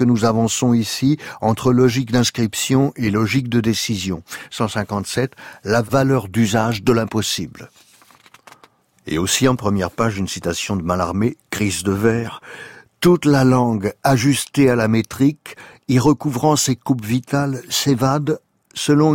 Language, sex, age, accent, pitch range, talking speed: French, male, 60-79, French, 100-130 Hz, 135 wpm